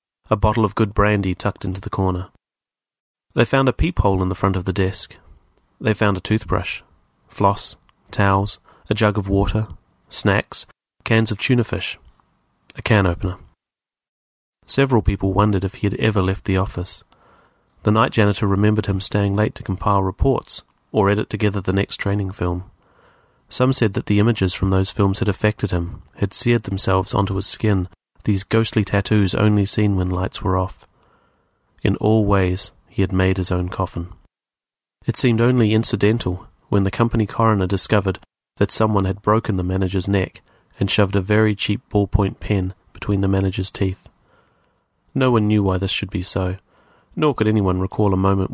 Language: English